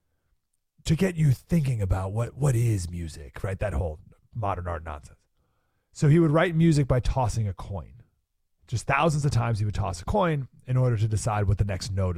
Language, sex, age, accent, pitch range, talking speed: English, male, 30-49, American, 105-170 Hz, 200 wpm